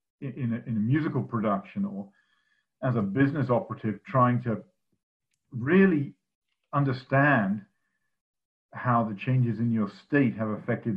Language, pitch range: English, 110-135 Hz